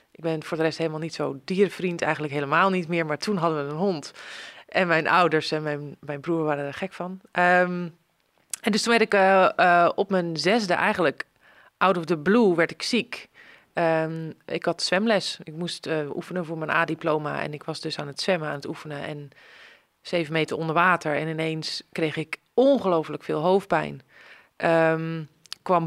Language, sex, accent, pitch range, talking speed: Dutch, female, Dutch, 155-180 Hz, 190 wpm